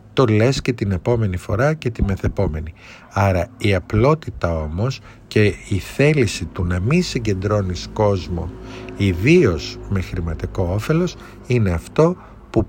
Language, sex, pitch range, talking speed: Greek, male, 100-130 Hz, 130 wpm